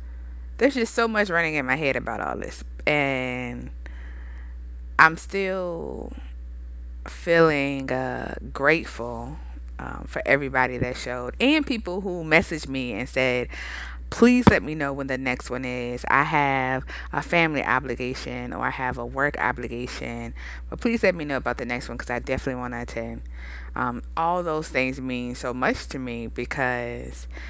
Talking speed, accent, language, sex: 160 wpm, American, English, female